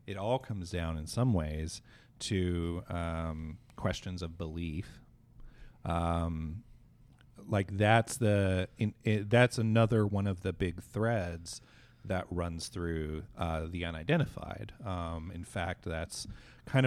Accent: American